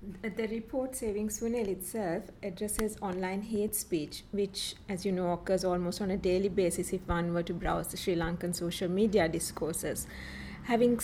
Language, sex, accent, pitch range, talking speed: English, female, Indian, 180-215 Hz, 170 wpm